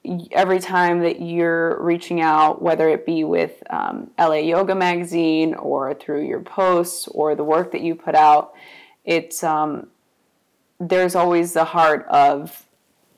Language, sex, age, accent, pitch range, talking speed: English, female, 20-39, American, 155-175 Hz, 145 wpm